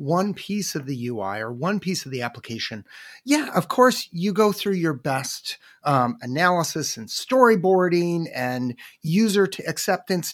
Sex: male